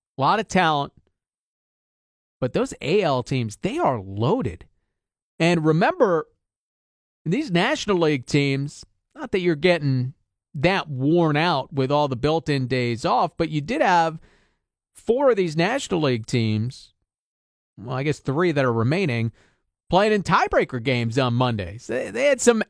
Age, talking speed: 40-59, 150 wpm